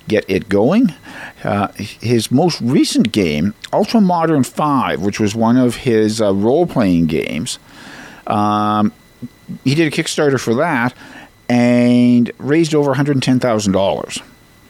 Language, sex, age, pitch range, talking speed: English, male, 50-69, 95-125 Hz, 145 wpm